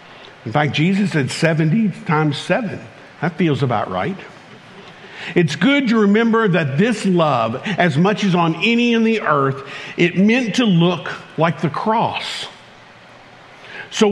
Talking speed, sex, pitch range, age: 145 wpm, male, 155-210 Hz, 50-69